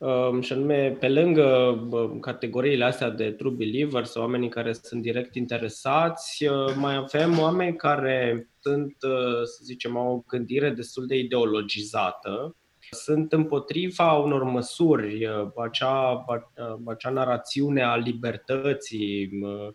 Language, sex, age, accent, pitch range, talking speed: Romanian, male, 20-39, native, 115-150 Hz, 110 wpm